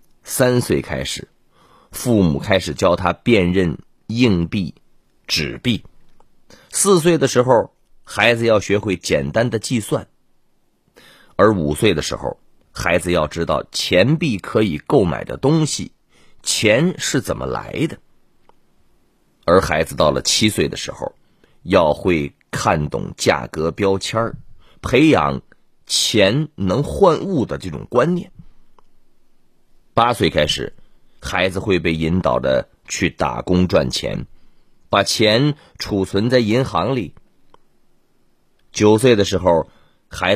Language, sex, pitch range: Chinese, male, 85-120 Hz